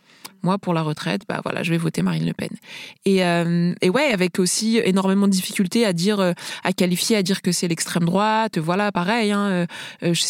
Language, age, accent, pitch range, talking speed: French, 20-39, French, 170-200 Hz, 210 wpm